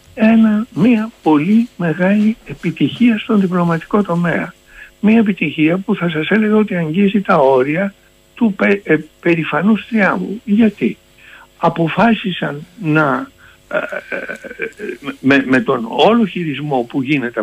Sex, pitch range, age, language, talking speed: male, 130-200 Hz, 60-79, Greek, 115 wpm